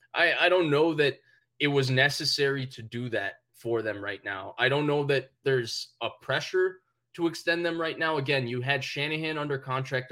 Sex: male